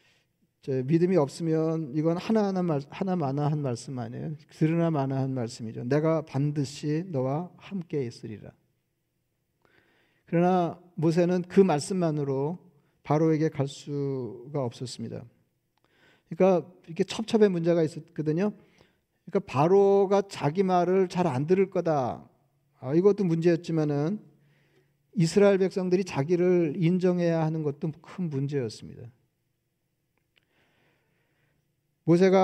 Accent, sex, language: native, male, Korean